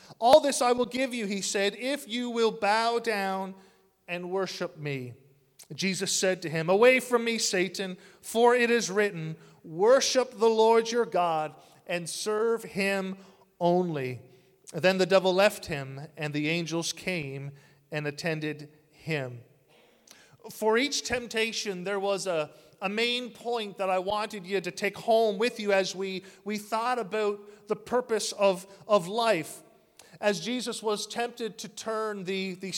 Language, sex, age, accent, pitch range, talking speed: English, male, 40-59, American, 185-225 Hz, 155 wpm